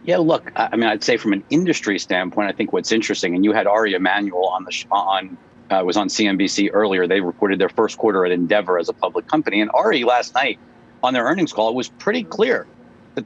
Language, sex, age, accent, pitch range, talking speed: English, male, 50-69, American, 115-155 Hz, 235 wpm